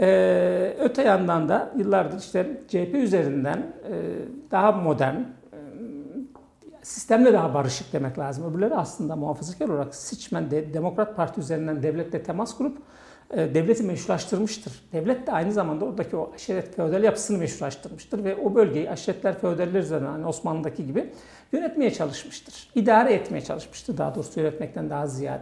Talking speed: 140 wpm